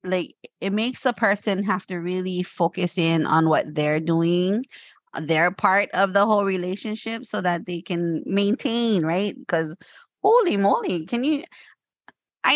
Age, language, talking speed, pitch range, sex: 20-39, English, 155 wpm, 170-220 Hz, female